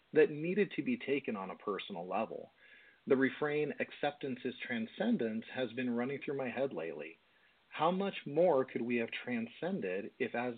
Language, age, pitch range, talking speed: English, 40-59, 120-170 Hz, 170 wpm